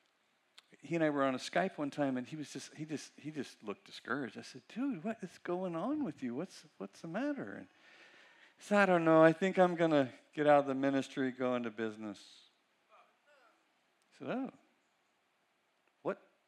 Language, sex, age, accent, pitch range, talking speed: English, male, 50-69, American, 105-150 Hz, 185 wpm